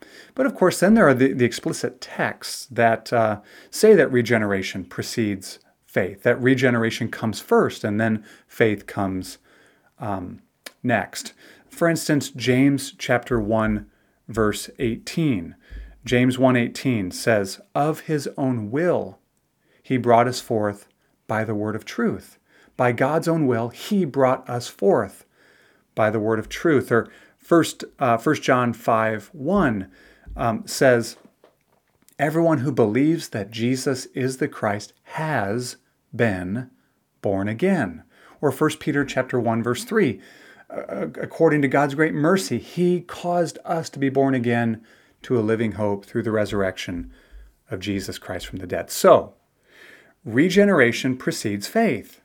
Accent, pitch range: American, 110-150 Hz